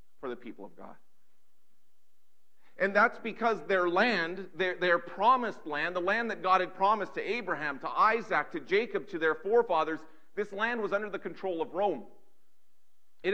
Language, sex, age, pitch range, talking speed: English, male, 40-59, 165-215 Hz, 165 wpm